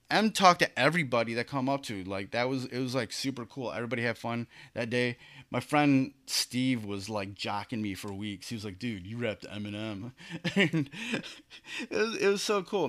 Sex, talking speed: male, 195 wpm